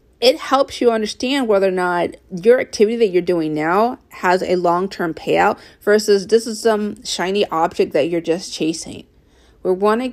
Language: English